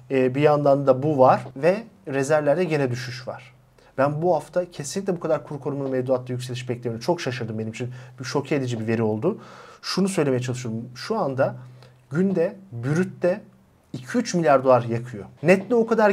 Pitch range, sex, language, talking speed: 125-175 Hz, male, Turkish, 175 wpm